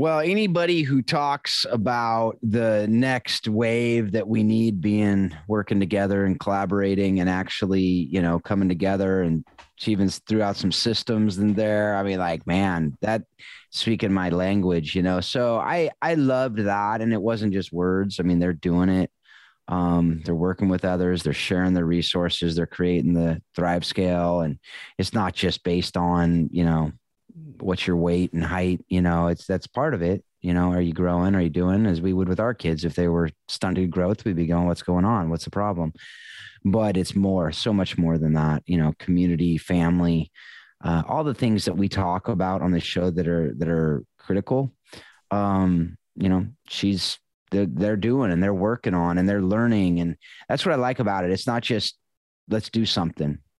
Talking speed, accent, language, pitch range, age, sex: 195 wpm, American, English, 85-105 Hz, 30-49, male